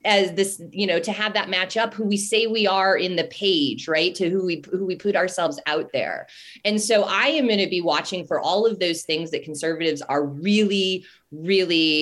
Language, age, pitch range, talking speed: English, 20-39, 155-210 Hz, 225 wpm